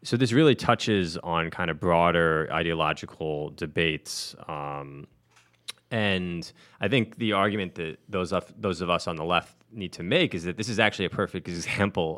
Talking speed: 175 wpm